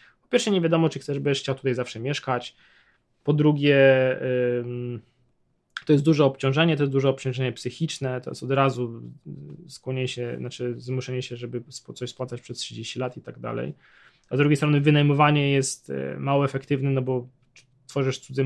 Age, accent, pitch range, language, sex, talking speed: 20-39, native, 130-150 Hz, Polish, male, 170 wpm